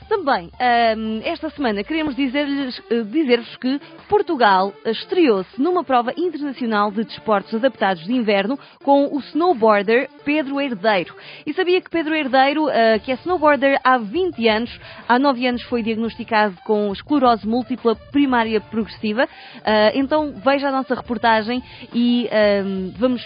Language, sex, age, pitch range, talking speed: Portuguese, female, 20-39, 210-275 Hz, 125 wpm